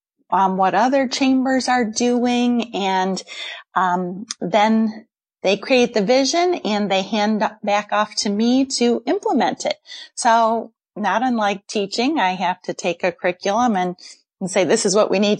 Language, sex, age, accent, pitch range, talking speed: English, female, 30-49, American, 190-235 Hz, 160 wpm